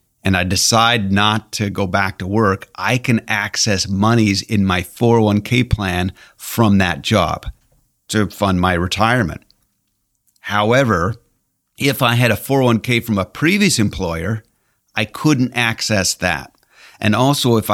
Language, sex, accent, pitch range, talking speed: English, male, American, 95-115 Hz, 140 wpm